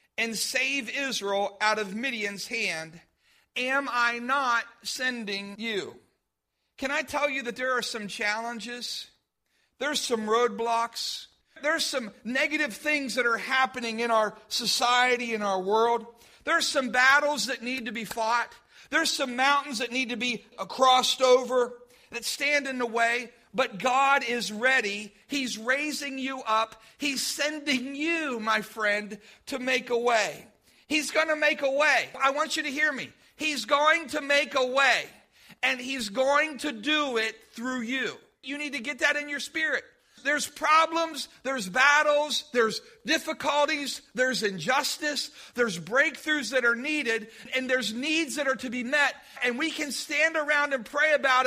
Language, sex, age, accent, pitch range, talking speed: English, male, 40-59, American, 235-290 Hz, 160 wpm